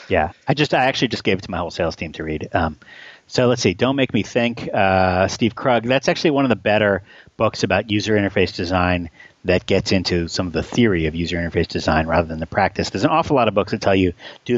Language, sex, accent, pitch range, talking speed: English, male, American, 85-110 Hz, 255 wpm